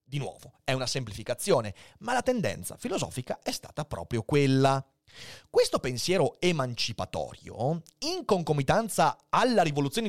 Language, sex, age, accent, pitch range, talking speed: Italian, male, 30-49, native, 120-175 Hz, 120 wpm